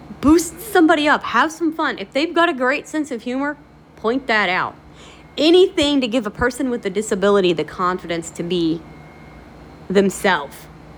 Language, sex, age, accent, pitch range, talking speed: English, female, 30-49, American, 165-265 Hz, 165 wpm